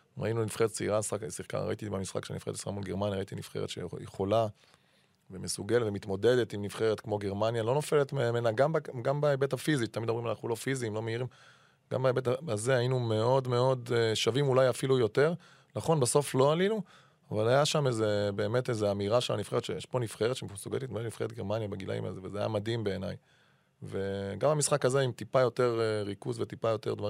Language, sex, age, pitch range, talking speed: Hebrew, male, 20-39, 105-130 Hz, 130 wpm